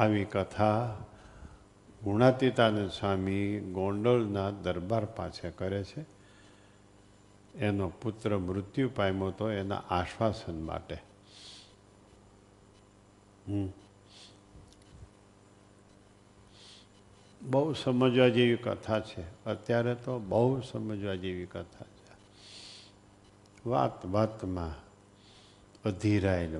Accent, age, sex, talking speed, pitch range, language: native, 50-69, male, 75 wpm, 95-105 Hz, Gujarati